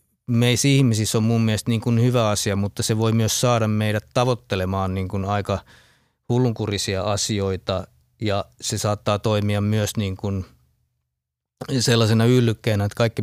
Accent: native